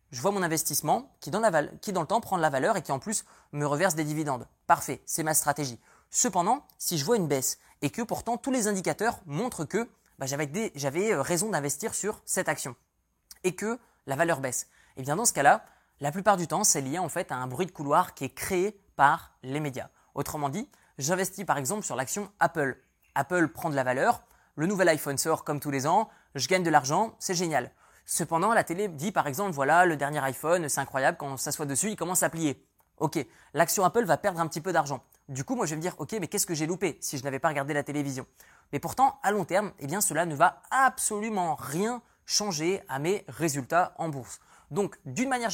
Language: French